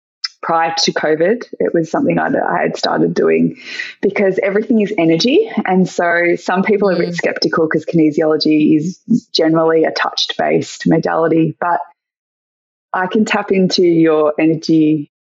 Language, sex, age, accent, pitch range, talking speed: English, female, 20-39, Australian, 160-210 Hz, 145 wpm